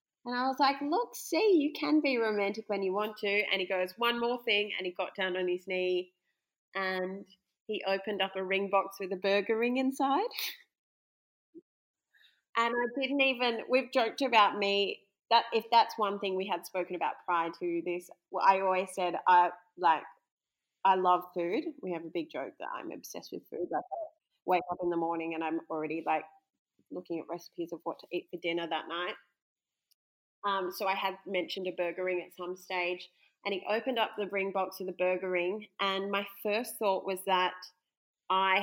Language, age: English, 30-49